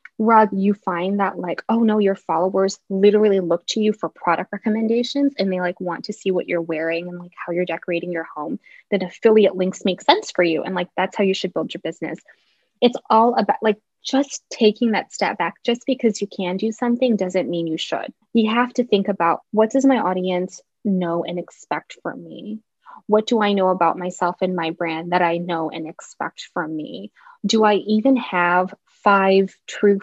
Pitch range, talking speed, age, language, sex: 180-225 Hz, 205 wpm, 20-39, English, female